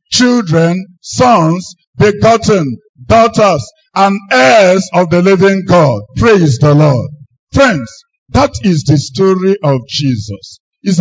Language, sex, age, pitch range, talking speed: English, male, 50-69, 175-245 Hz, 115 wpm